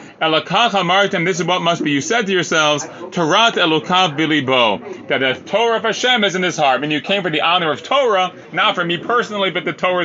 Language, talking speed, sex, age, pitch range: English, 220 wpm, male, 30-49, 155-210 Hz